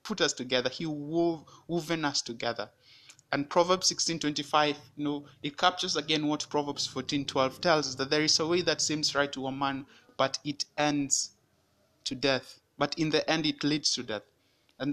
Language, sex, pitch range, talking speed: English, male, 130-155 Hz, 195 wpm